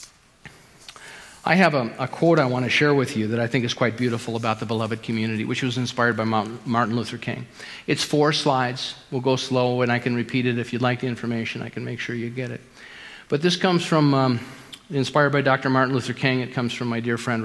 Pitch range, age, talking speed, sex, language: 120-160 Hz, 50-69, 235 wpm, male, English